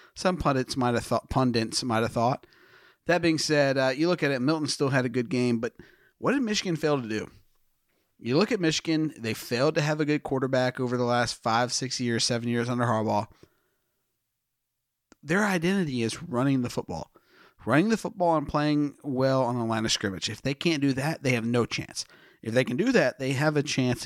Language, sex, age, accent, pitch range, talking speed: English, male, 40-59, American, 120-150 Hz, 215 wpm